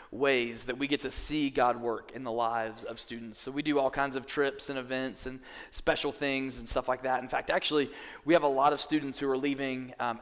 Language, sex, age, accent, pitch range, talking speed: English, male, 20-39, American, 125-150 Hz, 245 wpm